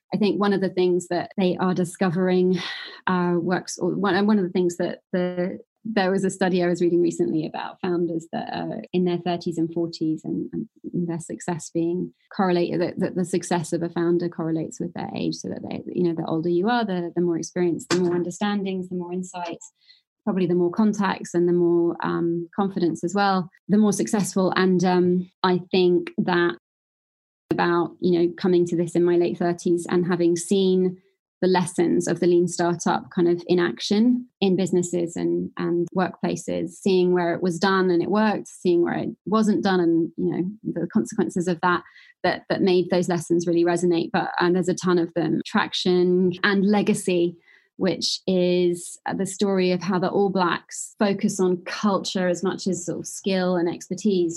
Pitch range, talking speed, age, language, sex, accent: 175-190 Hz, 195 wpm, 20-39, English, female, British